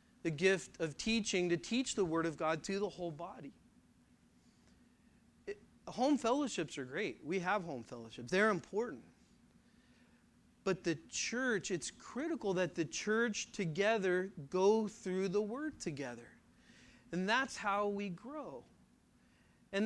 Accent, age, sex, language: American, 40-59, male, English